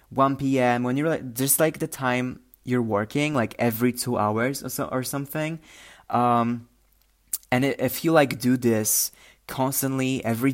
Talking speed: 165 wpm